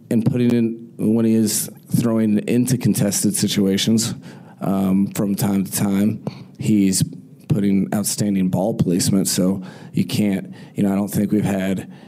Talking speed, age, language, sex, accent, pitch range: 150 wpm, 30-49, English, male, American, 95-105 Hz